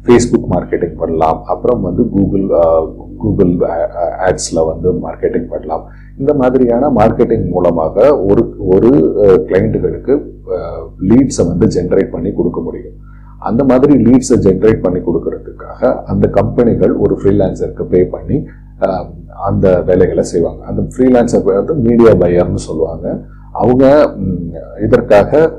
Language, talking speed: Tamil, 110 wpm